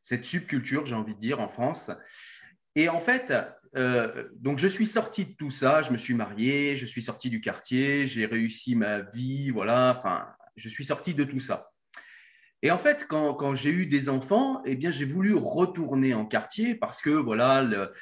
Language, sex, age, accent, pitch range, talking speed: French, male, 30-49, French, 125-160 Hz, 205 wpm